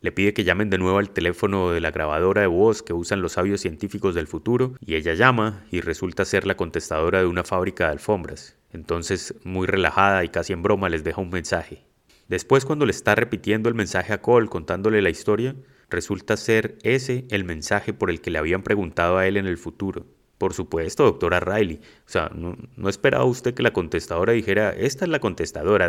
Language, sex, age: Spanish, male, 30-49